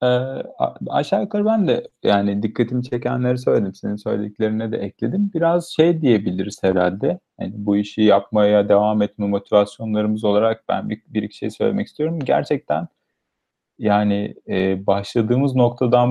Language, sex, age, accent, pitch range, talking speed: Turkish, male, 40-59, native, 100-125 Hz, 140 wpm